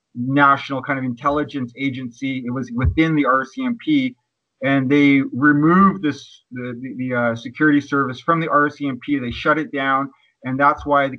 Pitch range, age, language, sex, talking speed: 135-150 Hz, 30-49, English, male, 165 wpm